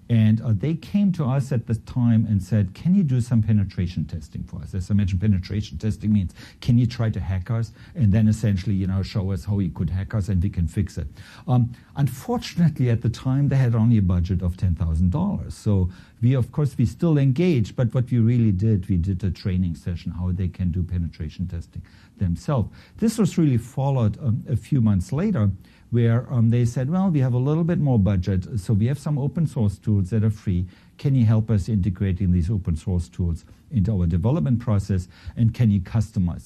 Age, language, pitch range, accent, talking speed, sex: 50-69, English, 95-125 Hz, German, 215 wpm, male